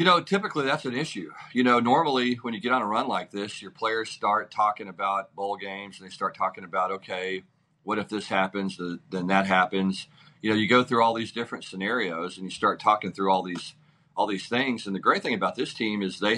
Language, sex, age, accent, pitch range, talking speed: English, male, 40-59, American, 100-130 Hz, 240 wpm